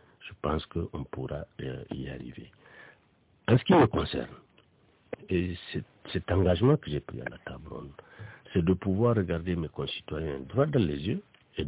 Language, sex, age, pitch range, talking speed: French, male, 60-79, 90-130 Hz, 170 wpm